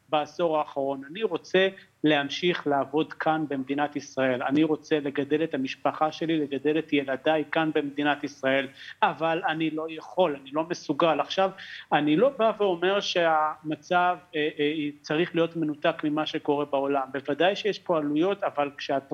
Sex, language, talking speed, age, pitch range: male, Hebrew, 150 wpm, 40-59, 145-180 Hz